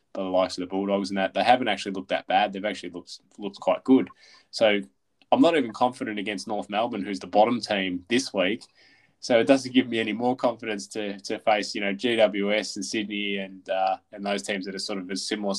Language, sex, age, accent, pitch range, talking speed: English, male, 20-39, Australian, 95-115 Hz, 230 wpm